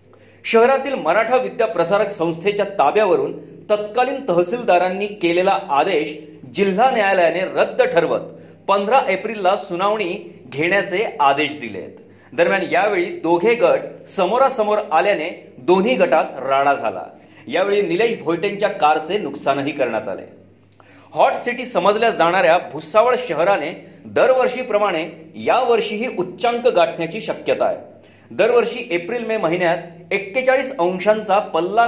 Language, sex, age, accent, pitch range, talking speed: Marathi, male, 40-59, native, 170-235 Hz, 105 wpm